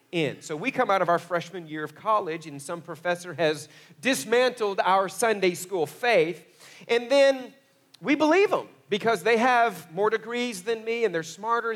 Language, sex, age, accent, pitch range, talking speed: English, male, 40-59, American, 145-215 Hz, 175 wpm